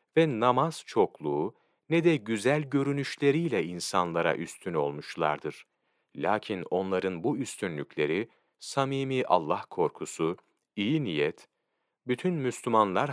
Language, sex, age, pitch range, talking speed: Turkish, male, 40-59, 95-145 Hz, 95 wpm